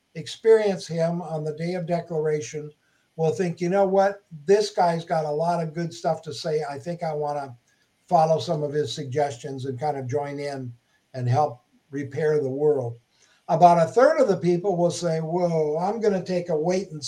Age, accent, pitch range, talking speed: 60-79, American, 155-200 Hz, 205 wpm